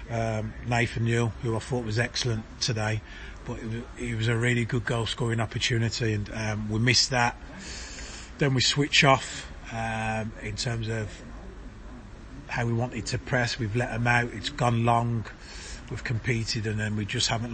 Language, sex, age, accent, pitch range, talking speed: English, male, 30-49, British, 110-125 Hz, 180 wpm